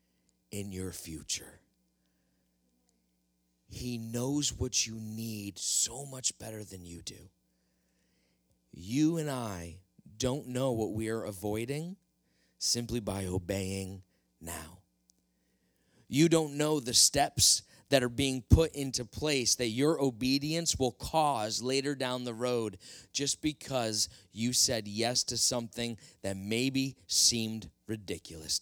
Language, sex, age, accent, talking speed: English, male, 30-49, American, 120 wpm